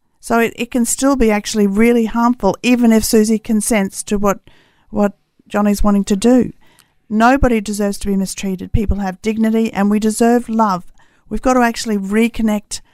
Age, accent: 50-69, Australian